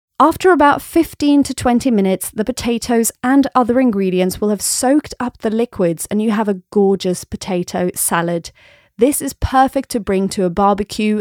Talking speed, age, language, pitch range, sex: 170 wpm, 30-49, English, 195-255 Hz, female